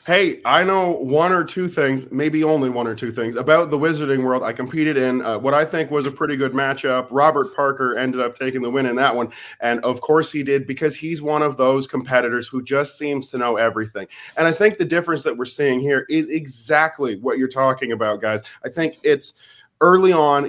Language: English